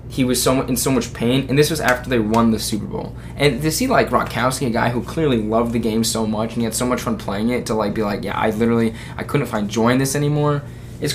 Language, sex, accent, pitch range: English, male, American, 110-130 Hz